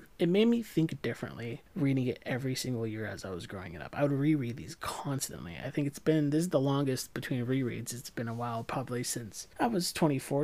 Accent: American